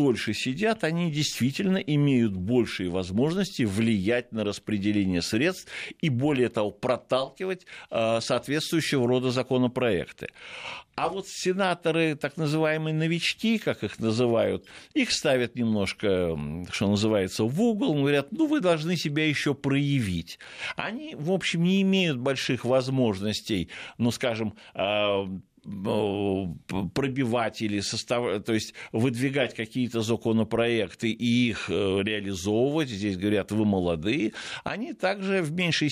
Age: 60-79